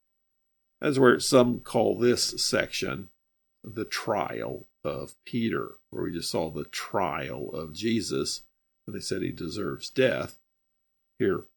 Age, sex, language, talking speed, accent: 50-69, male, English, 130 wpm, American